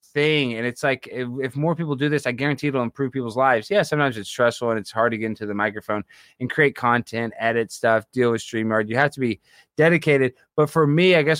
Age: 20-39